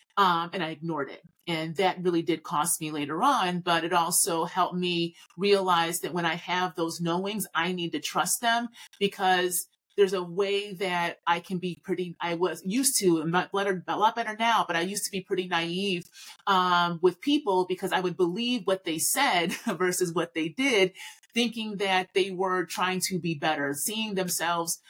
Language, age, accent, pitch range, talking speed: English, 30-49, American, 170-200 Hz, 190 wpm